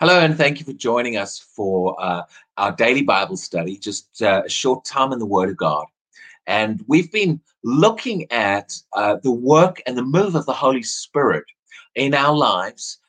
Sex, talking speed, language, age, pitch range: male, 190 wpm, English, 30-49, 125-180 Hz